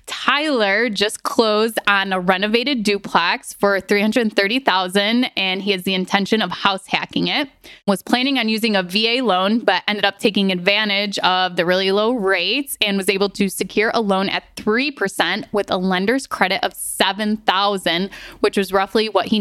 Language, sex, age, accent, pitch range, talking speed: English, female, 20-39, American, 190-220 Hz, 170 wpm